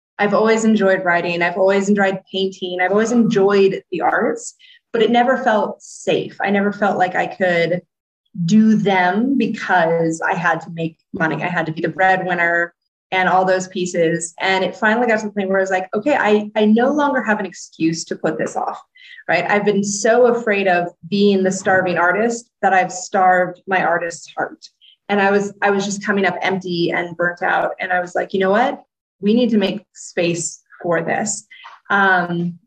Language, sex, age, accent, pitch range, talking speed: English, female, 20-39, American, 180-220 Hz, 195 wpm